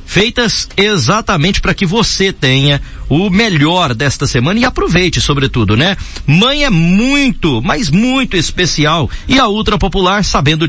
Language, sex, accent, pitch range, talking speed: Portuguese, male, Brazilian, 130-185 Hz, 140 wpm